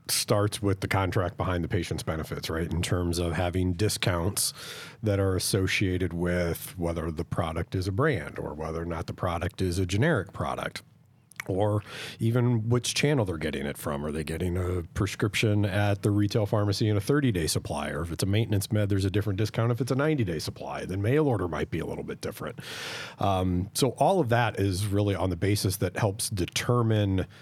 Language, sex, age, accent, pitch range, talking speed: English, male, 40-59, American, 95-120 Hz, 200 wpm